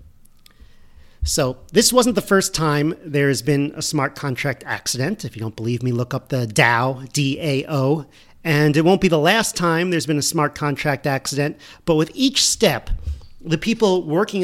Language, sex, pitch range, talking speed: English, male, 130-175 Hz, 180 wpm